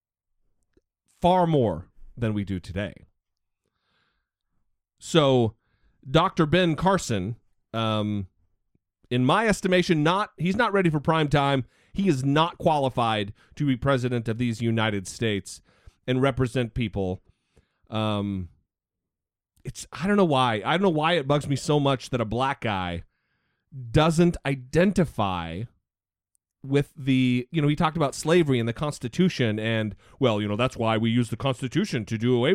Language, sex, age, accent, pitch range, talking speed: English, male, 40-59, American, 110-165 Hz, 145 wpm